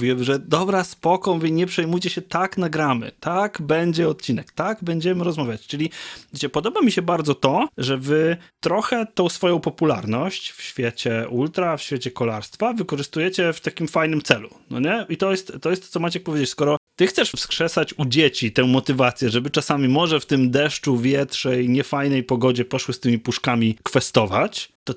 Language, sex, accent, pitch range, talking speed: Polish, male, native, 125-170 Hz, 180 wpm